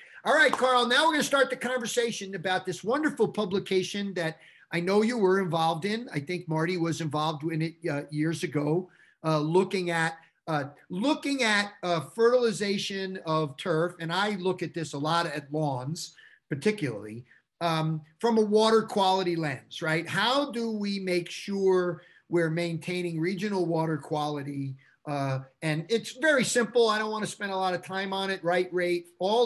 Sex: male